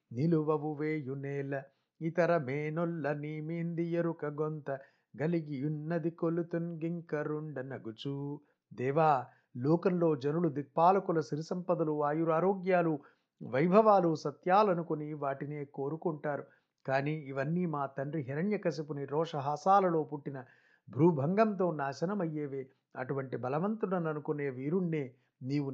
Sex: male